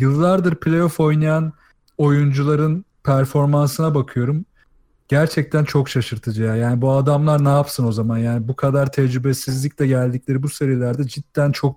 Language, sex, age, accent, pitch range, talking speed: Turkish, male, 40-59, native, 130-150 Hz, 135 wpm